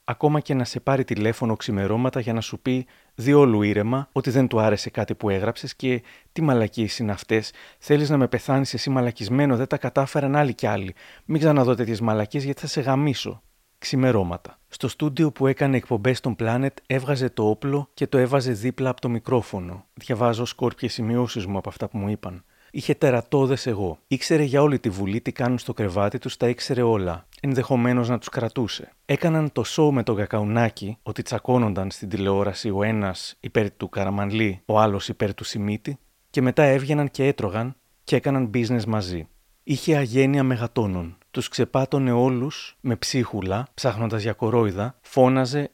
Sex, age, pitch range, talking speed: male, 30-49, 110-135 Hz, 175 wpm